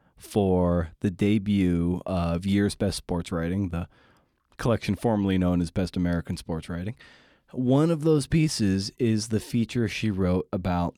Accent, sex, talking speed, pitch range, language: American, male, 150 wpm, 90-120 Hz, English